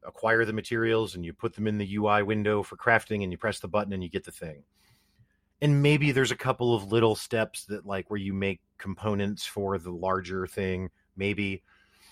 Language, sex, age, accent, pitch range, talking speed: English, male, 30-49, American, 95-120 Hz, 210 wpm